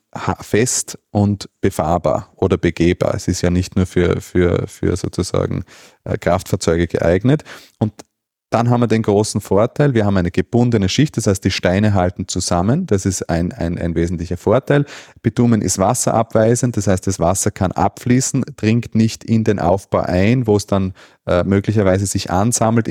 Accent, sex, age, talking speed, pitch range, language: Austrian, male, 30-49, 165 wpm, 90-110 Hz, German